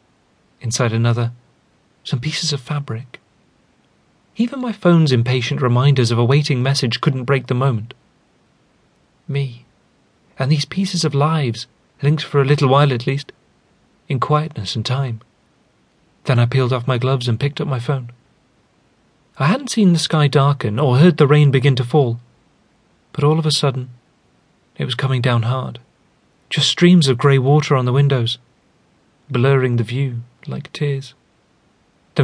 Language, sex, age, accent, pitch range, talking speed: English, male, 30-49, British, 120-145 Hz, 155 wpm